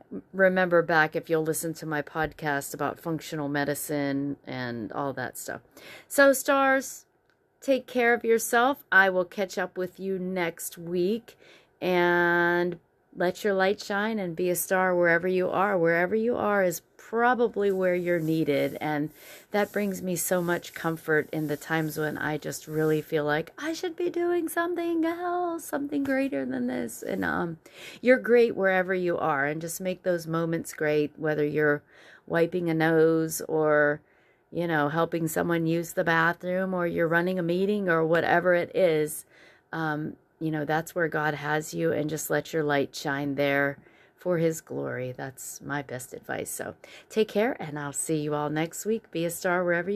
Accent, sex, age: American, female, 30-49